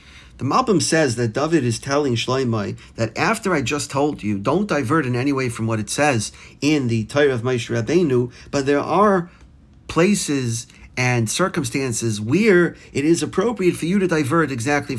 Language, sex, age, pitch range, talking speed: English, male, 40-59, 115-145 Hz, 175 wpm